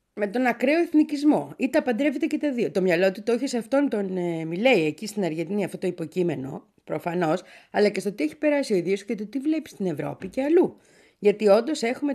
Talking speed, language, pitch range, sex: 220 wpm, Greek, 175-260 Hz, female